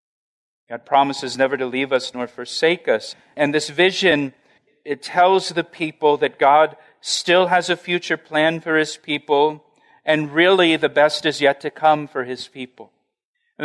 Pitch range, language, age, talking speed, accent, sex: 135-160 Hz, English, 40-59, 165 wpm, American, male